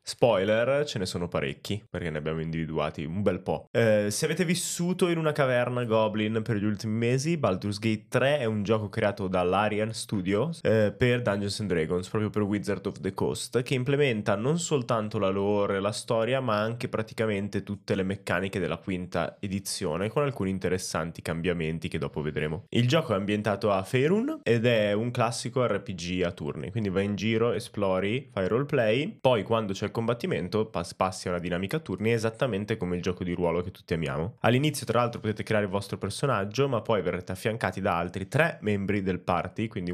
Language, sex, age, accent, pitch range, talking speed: Italian, male, 10-29, native, 95-115 Hz, 190 wpm